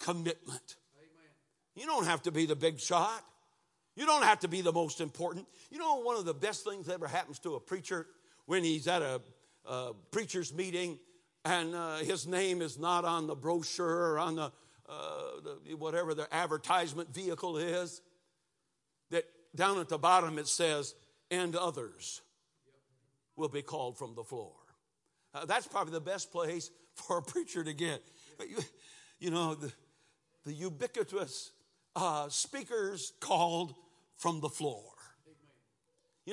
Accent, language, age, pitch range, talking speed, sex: American, English, 60-79, 150-180 Hz, 155 wpm, male